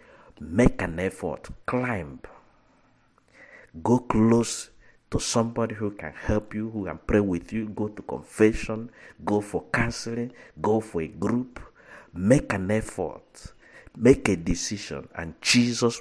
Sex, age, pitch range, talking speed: male, 50-69, 80-105 Hz, 130 wpm